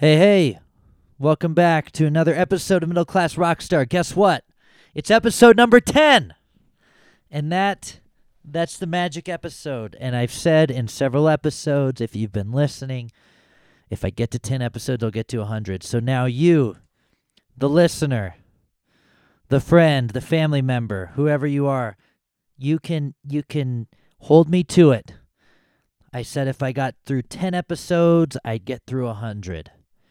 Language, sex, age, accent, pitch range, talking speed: English, male, 40-59, American, 115-155 Hz, 150 wpm